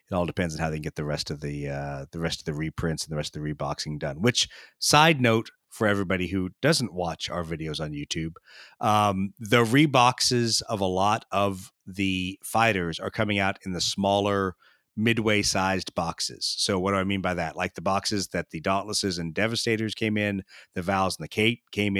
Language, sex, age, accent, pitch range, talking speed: English, male, 30-49, American, 85-105 Hz, 215 wpm